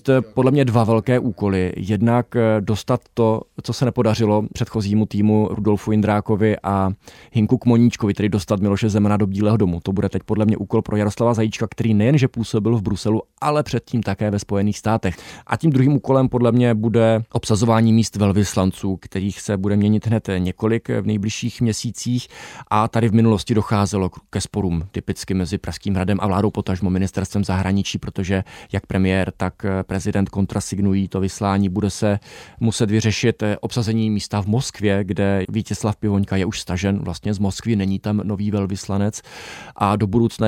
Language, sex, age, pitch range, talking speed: Czech, male, 20-39, 100-115 Hz, 165 wpm